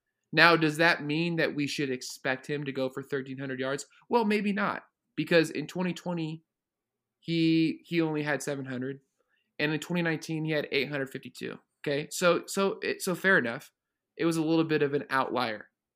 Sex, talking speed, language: male, 200 wpm, English